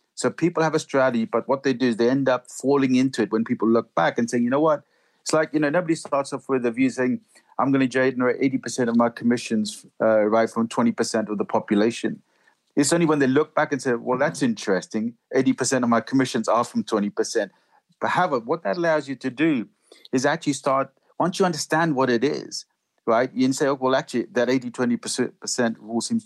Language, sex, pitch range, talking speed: English, male, 115-140 Hz, 220 wpm